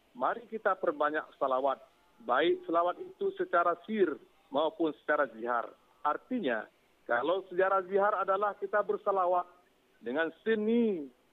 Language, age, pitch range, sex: Indonesian, 50-69, 155-210 Hz, male